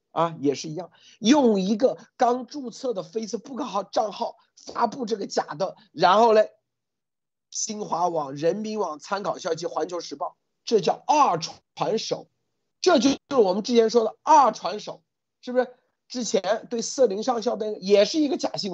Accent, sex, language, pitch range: native, male, Chinese, 185-265 Hz